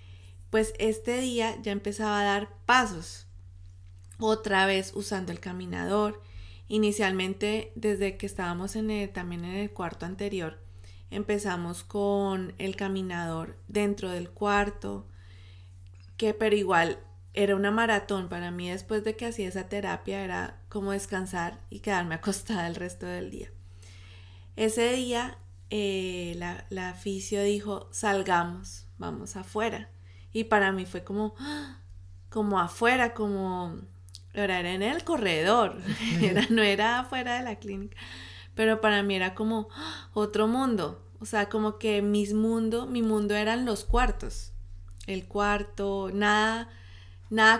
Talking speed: 130 wpm